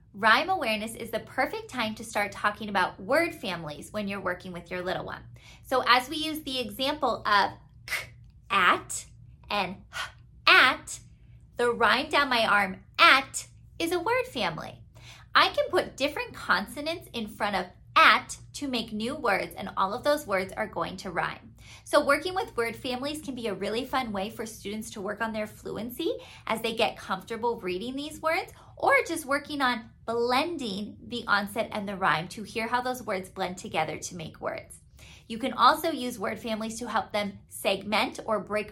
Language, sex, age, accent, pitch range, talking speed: English, female, 20-39, American, 200-275 Hz, 185 wpm